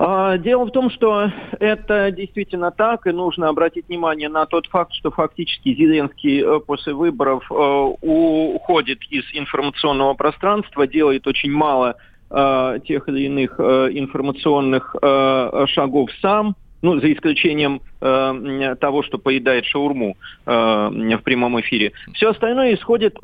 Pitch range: 140-190 Hz